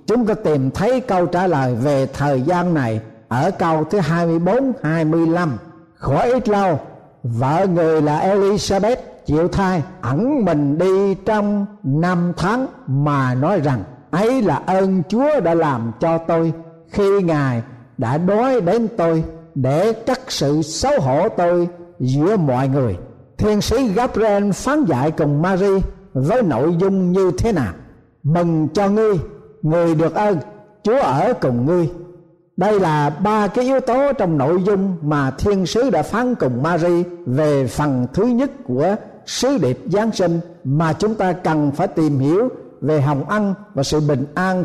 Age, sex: 60-79, male